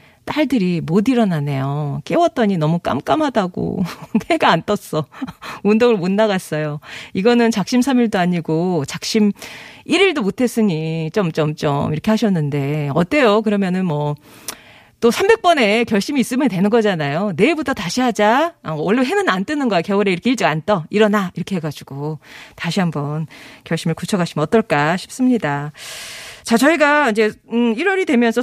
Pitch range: 170-245 Hz